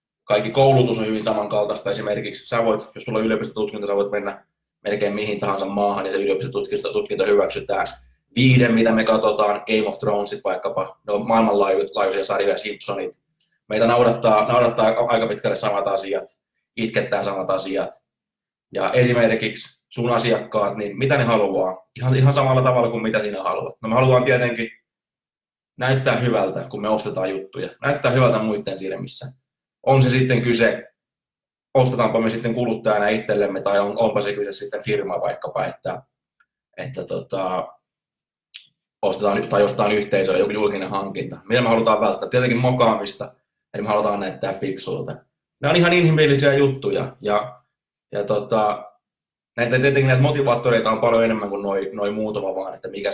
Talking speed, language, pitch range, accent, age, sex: 150 wpm, Finnish, 105-130 Hz, native, 20-39, male